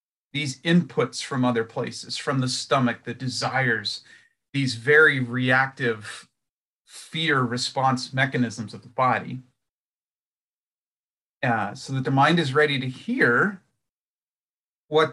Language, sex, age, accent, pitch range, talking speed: English, male, 40-59, American, 120-155 Hz, 115 wpm